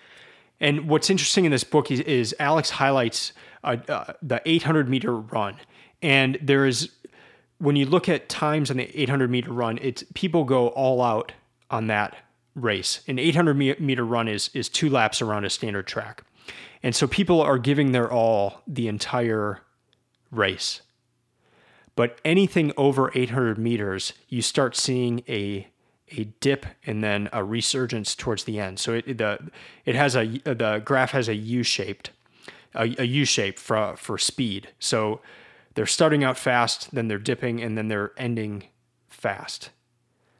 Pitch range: 110-140 Hz